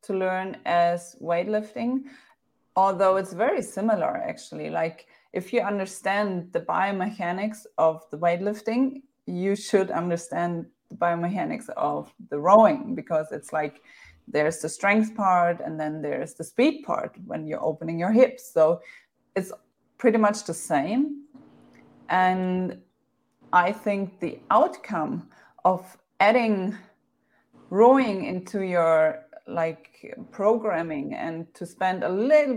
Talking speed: 125 wpm